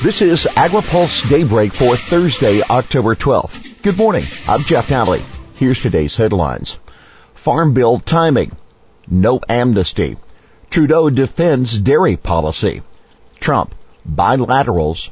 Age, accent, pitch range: 50-69, American, 95-125 Hz